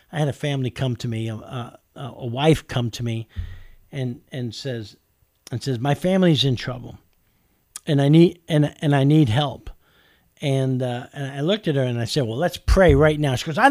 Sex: male